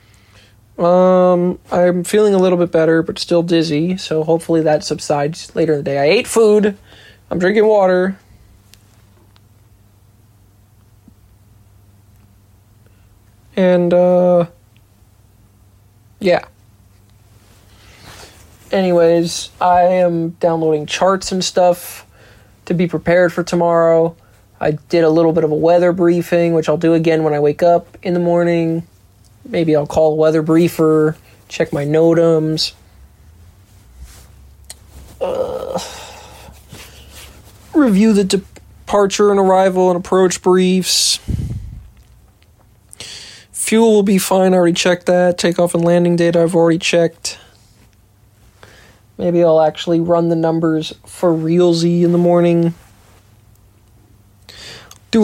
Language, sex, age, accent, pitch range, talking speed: English, male, 20-39, American, 105-175 Hz, 115 wpm